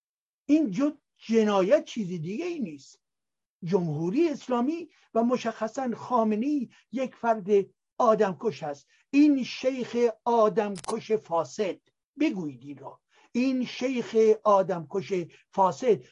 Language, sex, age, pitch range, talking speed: Persian, male, 60-79, 185-235 Hz, 95 wpm